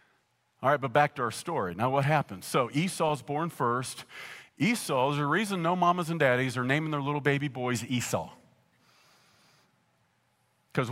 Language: English